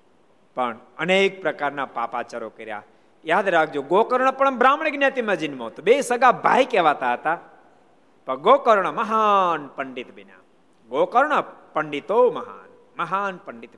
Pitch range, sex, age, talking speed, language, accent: 120-190 Hz, male, 50-69, 45 wpm, Gujarati, native